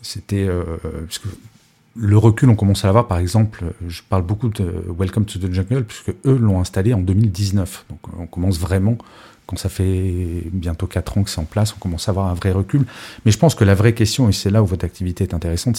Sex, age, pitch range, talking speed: male, 40-59, 95-110 Hz, 240 wpm